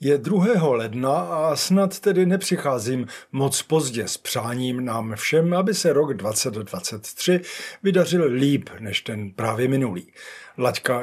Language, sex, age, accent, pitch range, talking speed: Czech, male, 50-69, native, 115-185 Hz, 130 wpm